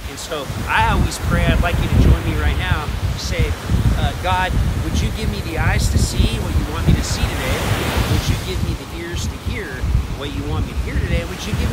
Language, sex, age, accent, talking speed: English, male, 40-59, American, 255 wpm